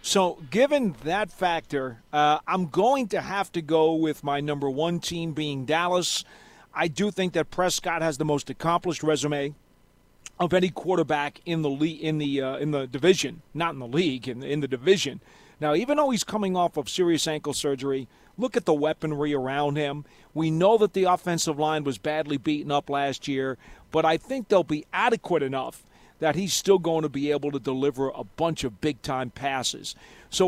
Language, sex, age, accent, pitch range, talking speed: English, male, 40-59, American, 145-180 Hz, 195 wpm